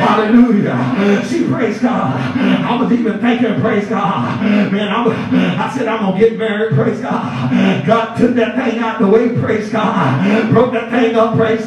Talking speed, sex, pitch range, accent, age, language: 180 wpm, male, 220-240 Hz, American, 40-59, English